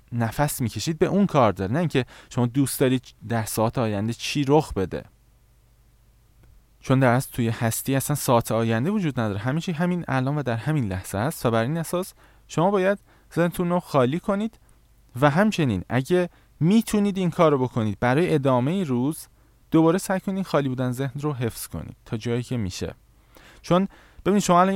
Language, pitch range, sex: Persian, 115-155 Hz, male